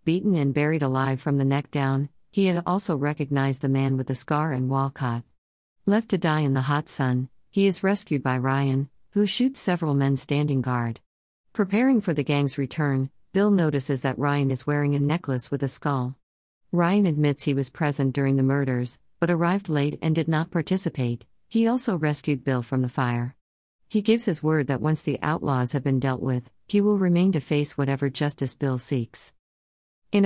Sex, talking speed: female, 190 wpm